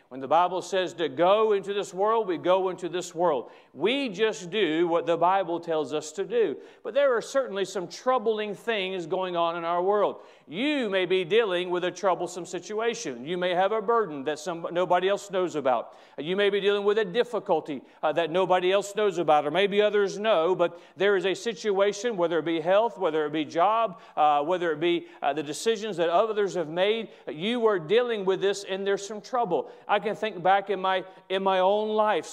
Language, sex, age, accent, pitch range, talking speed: English, male, 40-59, American, 180-220 Hz, 215 wpm